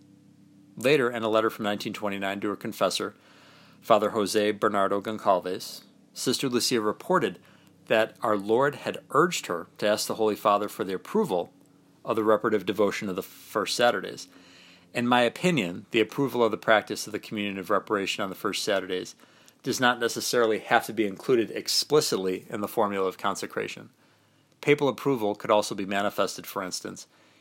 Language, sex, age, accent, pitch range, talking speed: English, male, 40-59, American, 100-120 Hz, 165 wpm